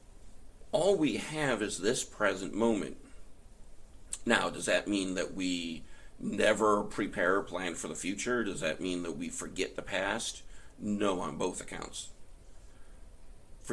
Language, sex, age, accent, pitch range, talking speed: English, male, 50-69, American, 85-110 Hz, 140 wpm